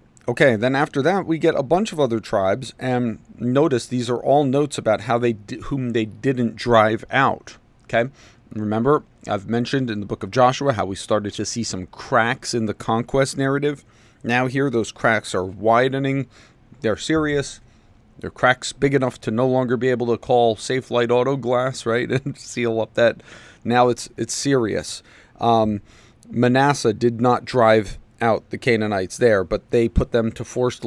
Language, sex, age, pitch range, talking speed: English, male, 40-59, 110-130 Hz, 180 wpm